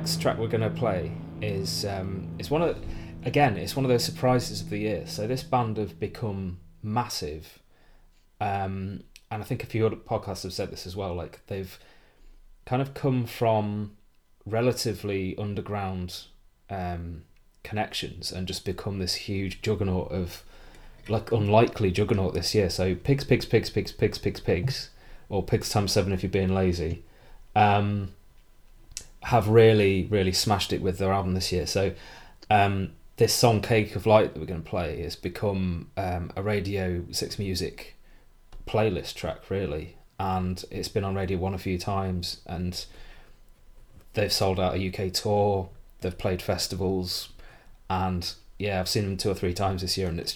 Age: 20-39